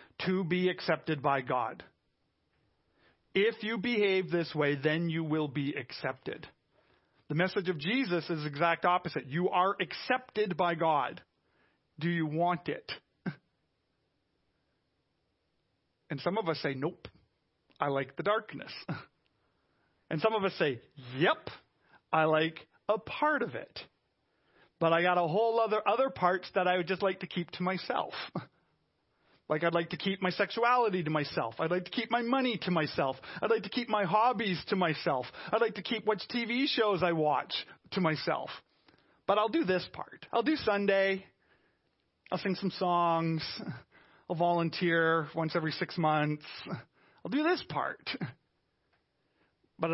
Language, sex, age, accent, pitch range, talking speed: English, male, 40-59, American, 160-205 Hz, 155 wpm